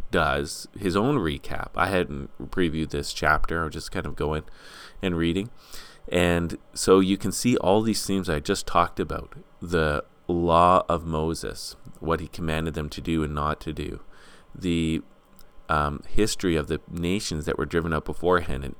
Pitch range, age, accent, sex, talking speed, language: 75-90 Hz, 30-49, American, male, 175 wpm, English